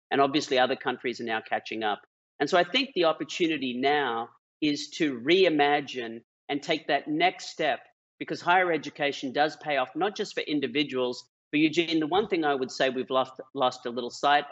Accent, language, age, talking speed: Australian, English, 40-59, 195 wpm